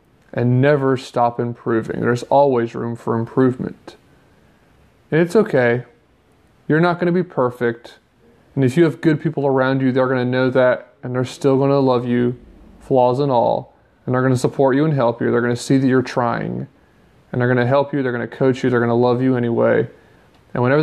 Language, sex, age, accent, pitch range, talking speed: English, male, 20-39, American, 125-140 Hz, 220 wpm